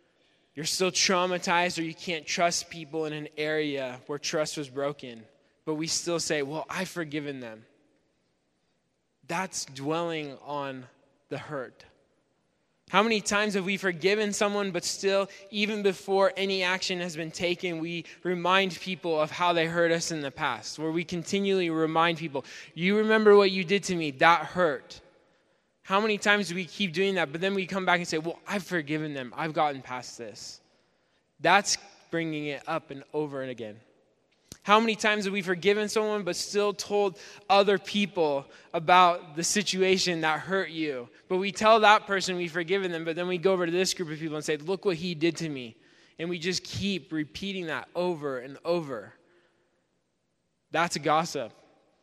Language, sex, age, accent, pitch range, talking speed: English, male, 10-29, American, 155-190 Hz, 180 wpm